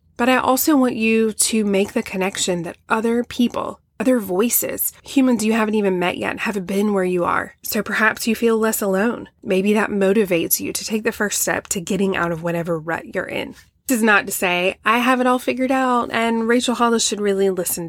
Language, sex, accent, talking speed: English, female, American, 220 wpm